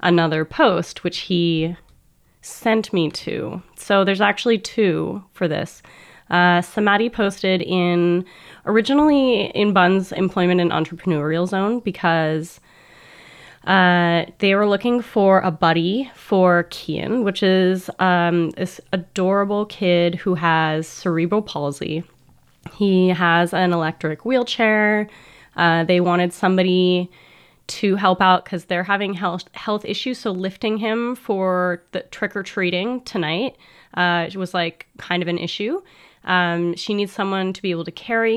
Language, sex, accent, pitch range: English, female, American, 175-205 Hz